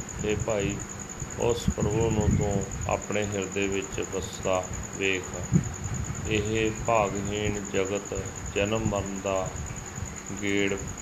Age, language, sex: 40-59, Punjabi, male